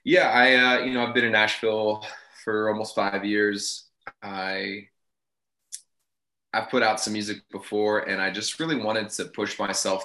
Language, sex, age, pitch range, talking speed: English, male, 20-39, 95-115 Hz, 165 wpm